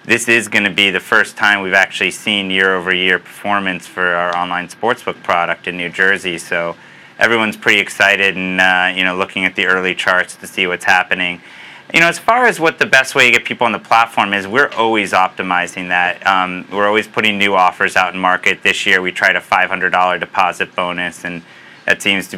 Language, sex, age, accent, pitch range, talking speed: English, male, 30-49, American, 90-100 Hz, 215 wpm